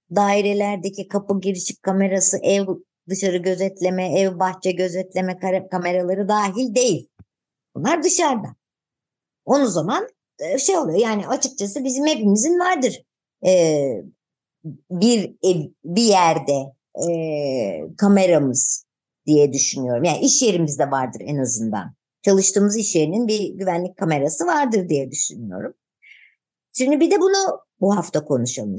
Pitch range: 160-255 Hz